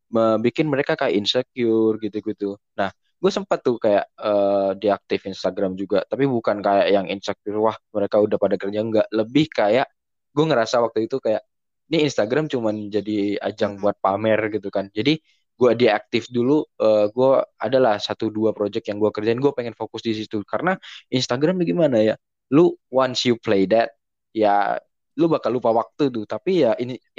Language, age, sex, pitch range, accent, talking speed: Indonesian, 10-29, male, 105-130 Hz, native, 175 wpm